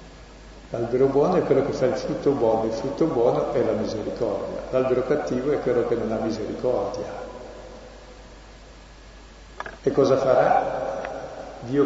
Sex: male